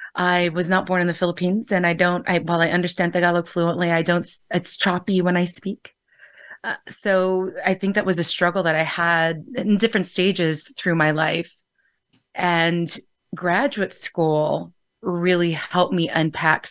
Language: English